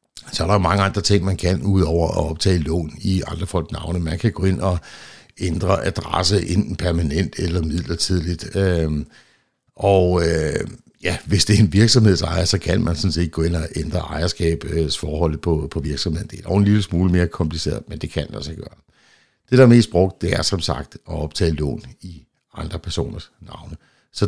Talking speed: 205 wpm